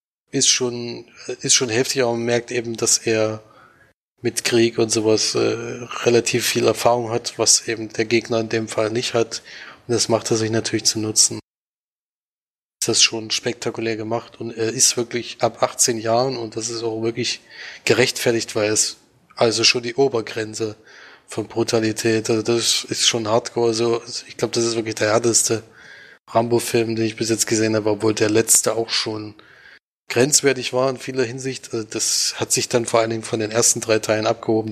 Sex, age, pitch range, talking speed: male, 20-39, 110-120 Hz, 185 wpm